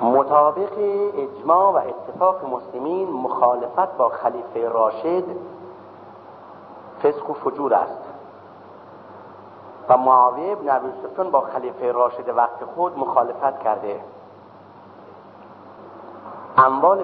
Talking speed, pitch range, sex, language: 90 wpm, 125-175 Hz, male, Persian